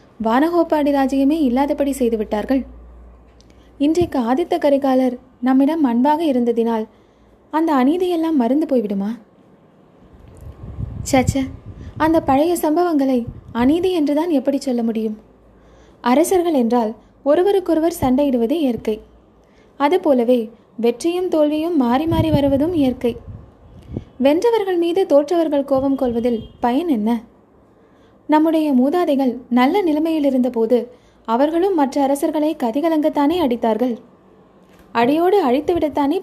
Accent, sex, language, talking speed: native, female, Tamil, 90 wpm